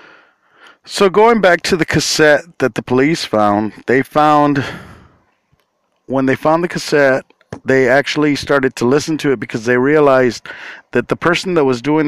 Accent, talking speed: American, 165 wpm